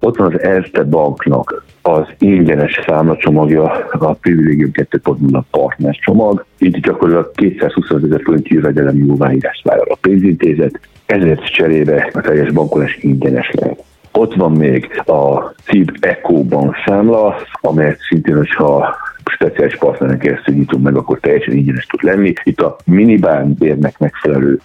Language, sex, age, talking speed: Hungarian, male, 60-79, 135 wpm